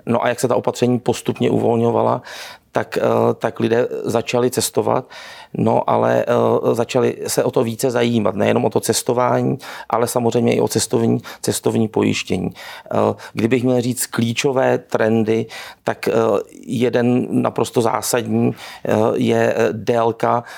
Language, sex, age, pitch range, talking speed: Czech, male, 40-59, 110-120 Hz, 125 wpm